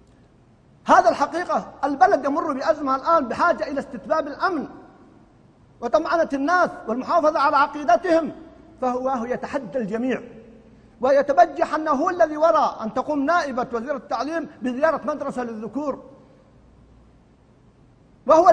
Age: 50-69